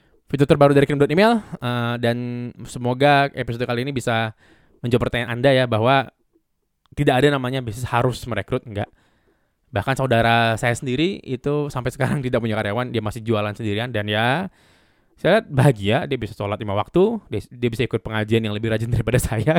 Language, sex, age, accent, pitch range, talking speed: Indonesian, male, 20-39, native, 110-135 Hz, 175 wpm